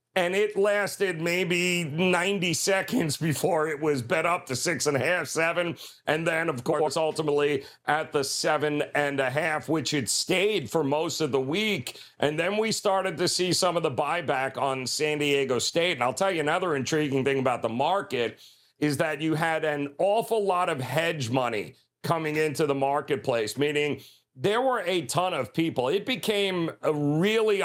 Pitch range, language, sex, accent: 150-200 Hz, English, male, American